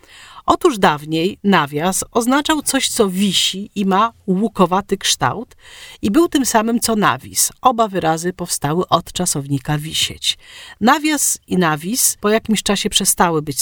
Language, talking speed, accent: Polish, 135 wpm, native